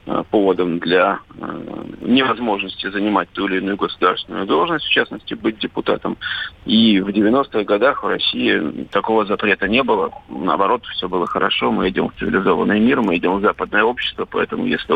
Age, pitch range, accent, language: 40-59, 105-130 Hz, native, Russian